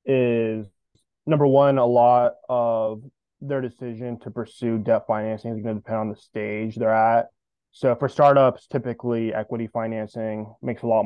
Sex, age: male, 20-39